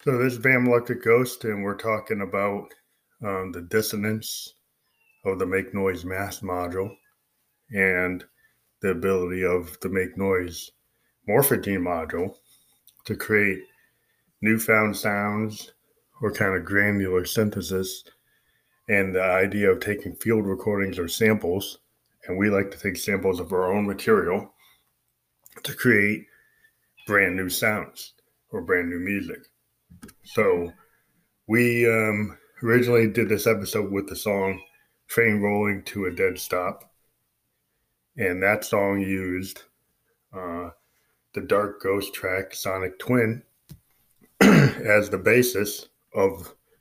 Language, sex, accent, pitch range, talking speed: English, male, American, 95-110 Hz, 125 wpm